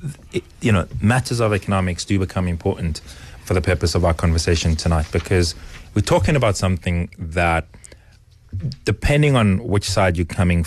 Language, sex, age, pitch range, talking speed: English, male, 30-49, 90-105 Hz, 150 wpm